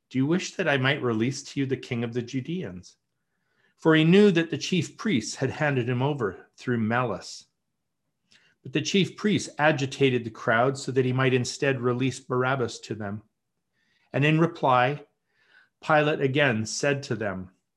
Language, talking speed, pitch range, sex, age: English, 170 wpm, 120-150 Hz, male, 40-59